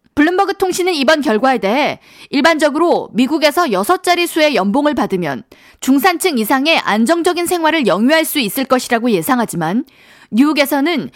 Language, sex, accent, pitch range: Korean, female, native, 250-350 Hz